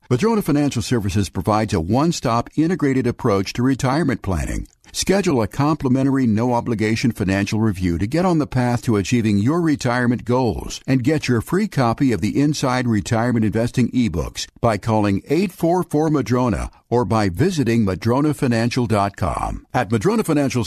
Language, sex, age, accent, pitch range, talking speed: English, male, 60-79, American, 110-140 Hz, 140 wpm